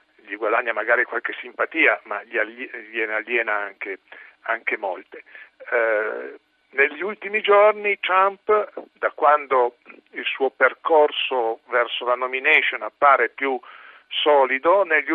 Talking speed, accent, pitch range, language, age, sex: 110 wpm, native, 125-175 Hz, Italian, 50-69, male